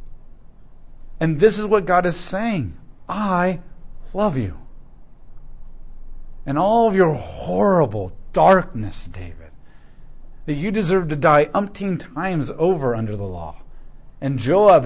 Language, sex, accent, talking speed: English, male, American, 120 wpm